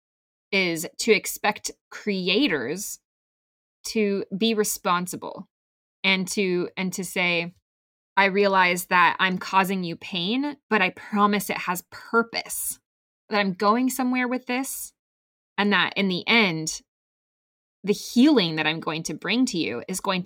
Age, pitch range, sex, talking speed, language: 20-39, 180-230 Hz, female, 140 wpm, English